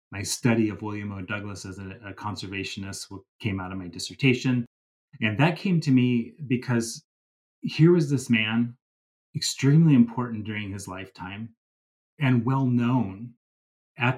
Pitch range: 100-120 Hz